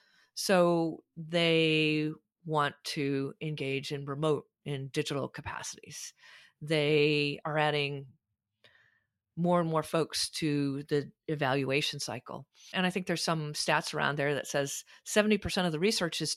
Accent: American